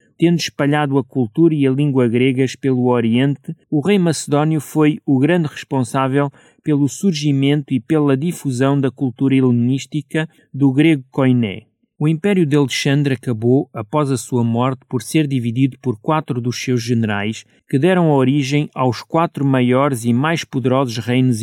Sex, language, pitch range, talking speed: male, Portuguese, 125-160 Hz, 155 wpm